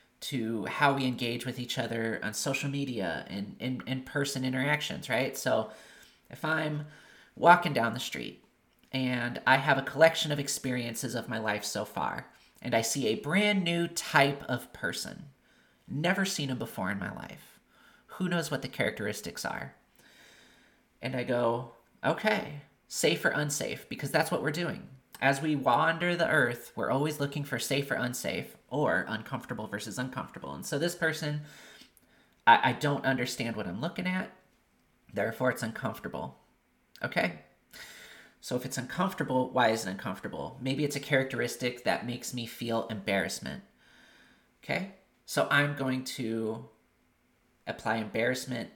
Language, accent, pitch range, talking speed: English, American, 115-145 Hz, 150 wpm